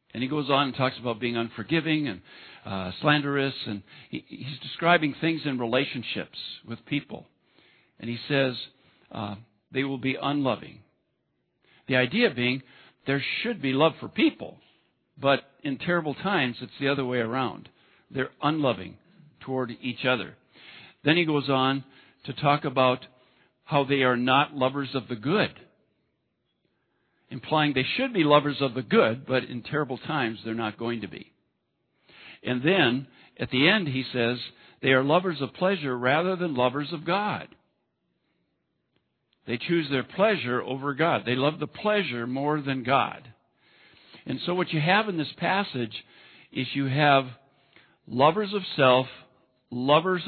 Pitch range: 125-155 Hz